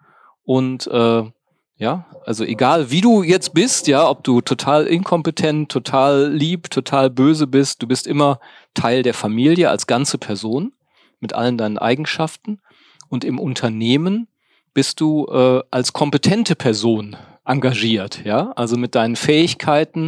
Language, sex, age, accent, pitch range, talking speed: German, male, 40-59, German, 110-150 Hz, 140 wpm